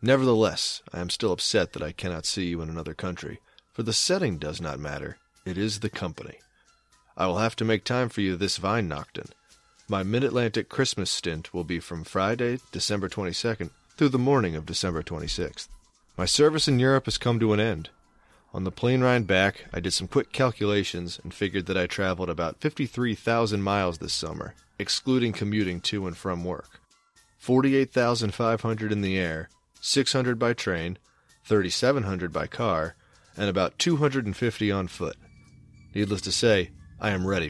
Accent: American